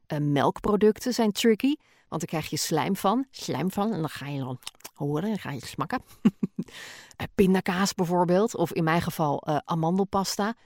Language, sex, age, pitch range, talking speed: Dutch, female, 40-59, 155-210 Hz, 175 wpm